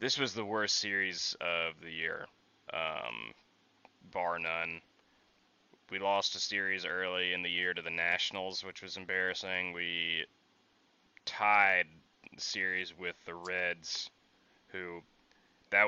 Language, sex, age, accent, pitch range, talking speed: English, male, 20-39, American, 85-105 Hz, 130 wpm